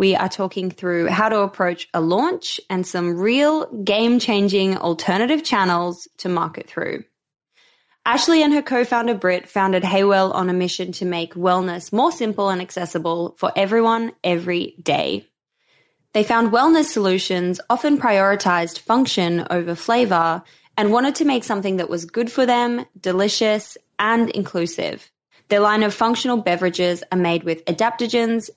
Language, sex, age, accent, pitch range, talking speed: English, female, 20-39, Australian, 175-235 Hz, 145 wpm